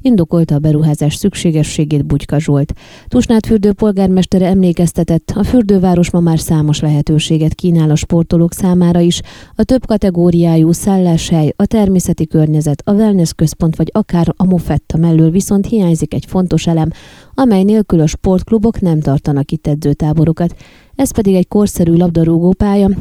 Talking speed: 135 wpm